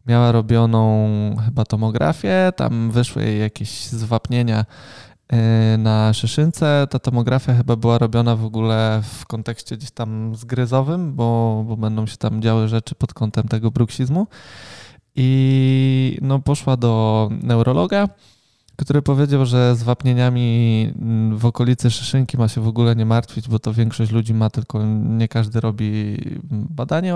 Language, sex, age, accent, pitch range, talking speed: Polish, male, 20-39, native, 110-135 Hz, 140 wpm